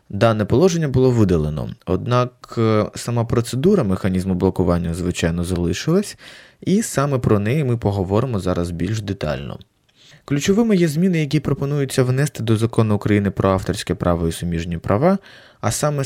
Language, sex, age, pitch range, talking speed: Ukrainian, male, 20-39, 95-130 Hz, 140 wpm